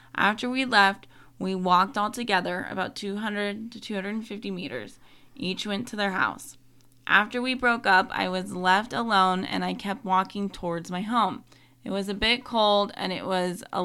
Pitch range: 180-210 Hz